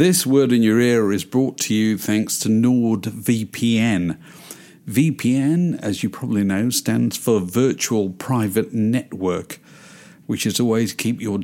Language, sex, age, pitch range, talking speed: English, male, 50-69, 105-145 Hz, 140 wpm